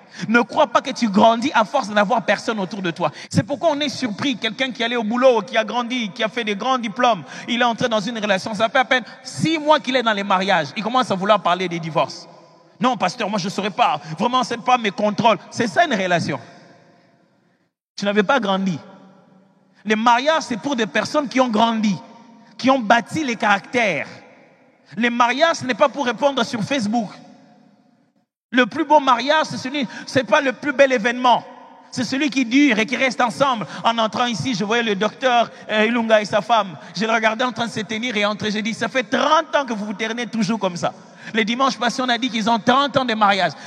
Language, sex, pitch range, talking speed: French, male, 210-260 Hz, 230 wpm